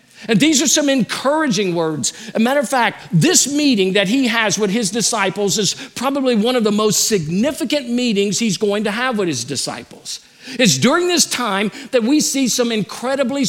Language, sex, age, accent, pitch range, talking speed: English, male, 50-69, American, 180-245 Hz, 190 wpm